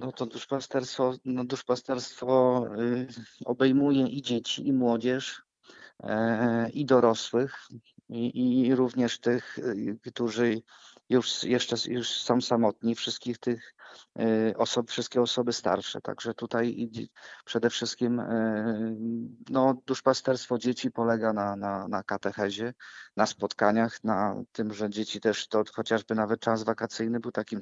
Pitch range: 110-120 Hz